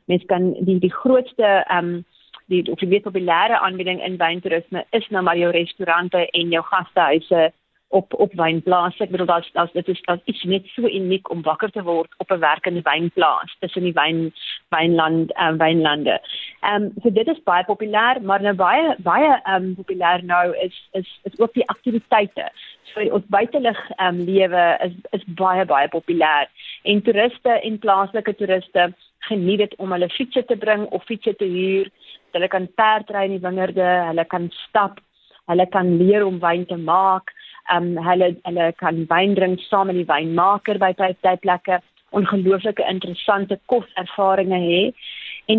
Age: 30-49